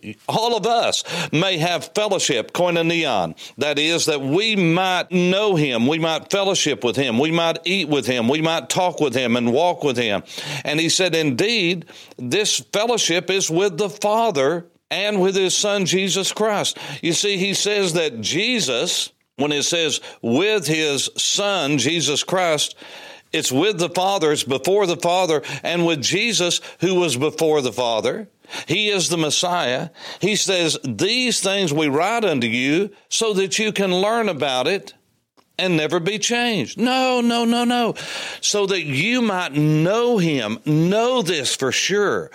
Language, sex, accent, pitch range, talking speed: English, male, American, 155-205 Hz, 165 wpm